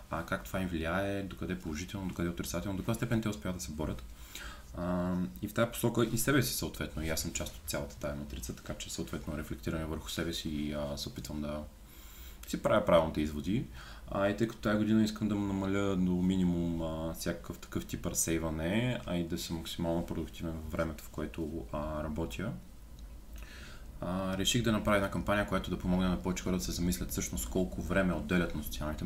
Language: Bulgarian